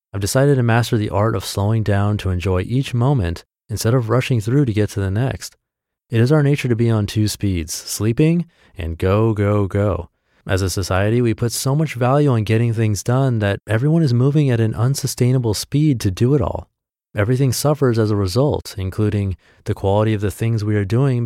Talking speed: 210 wpm